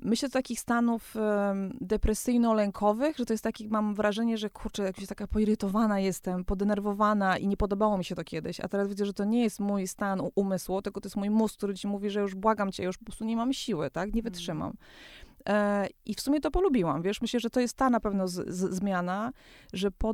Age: 20-39